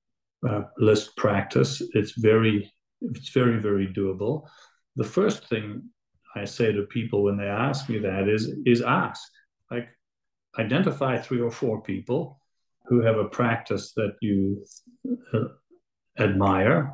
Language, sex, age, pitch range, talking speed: English, male, 50-69, 105-135 Hz, 135 wpm